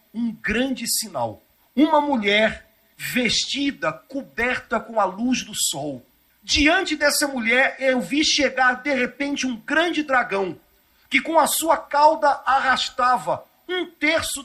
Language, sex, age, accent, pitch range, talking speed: Portuguese, male, 50-69, Brazilian, 205-275 Hz, 130 wpm